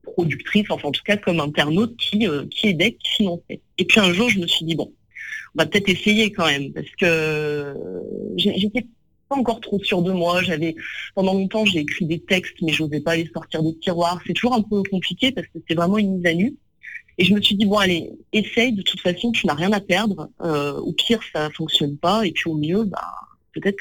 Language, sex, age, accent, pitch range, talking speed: French, female, 40-59, French, 155-205 Hz, 240 wpm